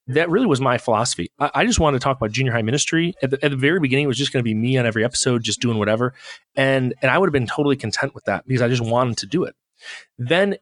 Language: English